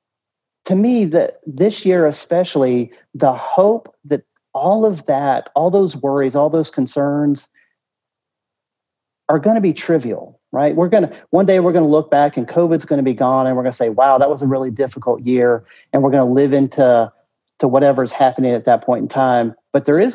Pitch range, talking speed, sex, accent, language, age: 130-160 Hz, 190 wpm, male, American, English, 40-59